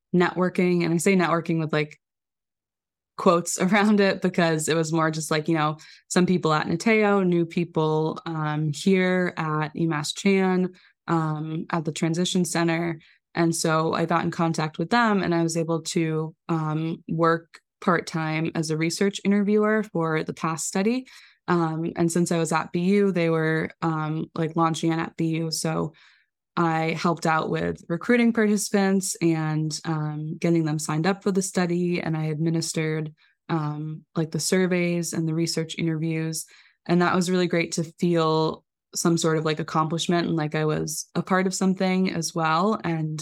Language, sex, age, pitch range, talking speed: English, female, 20-39, 155-175 Hz, 170 wpm